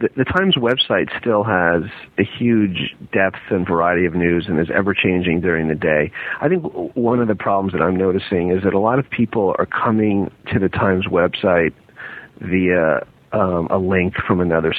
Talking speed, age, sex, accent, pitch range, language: 185 wpm, 40-59, male, American, 90-120 Hz, English